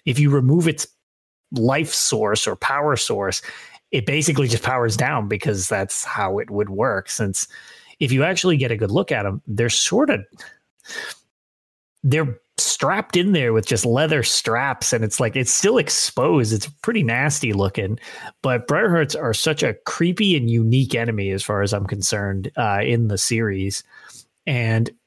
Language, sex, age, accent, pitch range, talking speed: English, male, 30-49, American, 105-145 Hz, 170 wpm